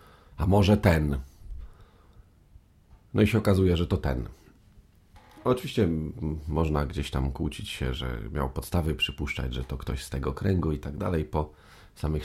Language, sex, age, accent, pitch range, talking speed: Polish, male, 40-59, native, 70-90 Hz, 150 wpm